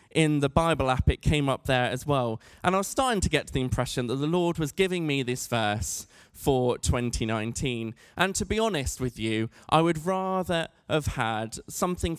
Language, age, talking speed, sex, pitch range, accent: English, 20-39, 200 wpm, male, 125-170 Hz, British